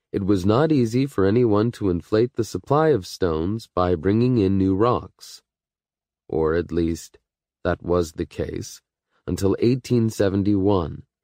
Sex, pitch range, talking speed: male, 90-125 Hz, 140 wpm